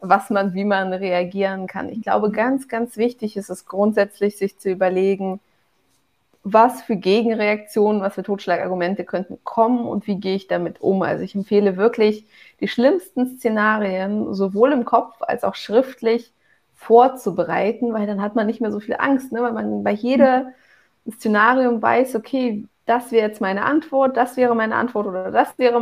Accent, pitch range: German, 195-240 Hz